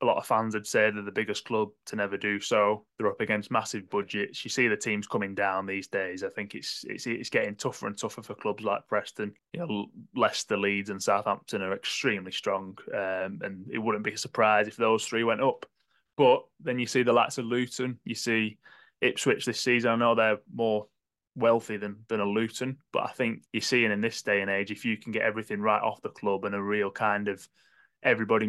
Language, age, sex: English, 20-39, male